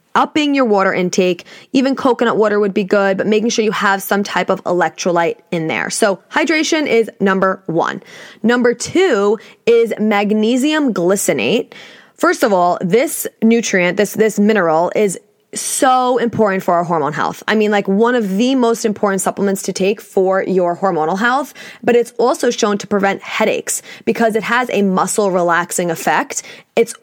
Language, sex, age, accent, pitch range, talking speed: English, female, 20-39, American, 190-240 Hz, 170 wpm